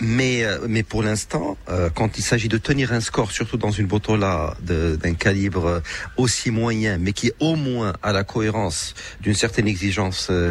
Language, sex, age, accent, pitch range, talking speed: French, male, 40-59, French, 95-120 Hz, 190 wpm